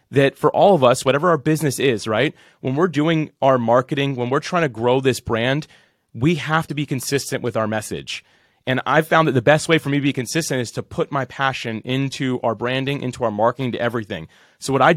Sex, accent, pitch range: male, American, 125-150 Hz